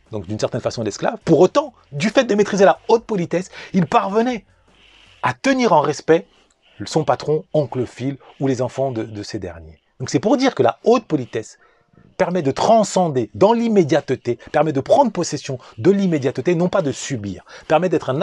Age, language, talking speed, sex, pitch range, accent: 40-59, French, 190 wpm, male, 120-185 Hz, French